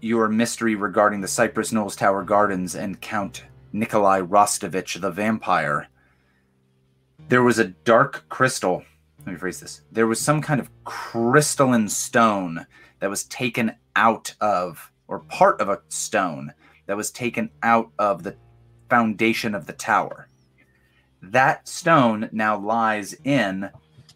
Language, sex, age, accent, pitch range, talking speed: English, male, 30-49, American, 80-115 Hz, 135 wpm